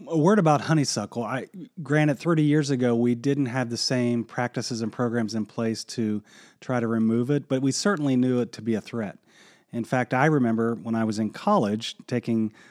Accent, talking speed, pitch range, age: American, 205 wpm, 110-135 Hz, 30-49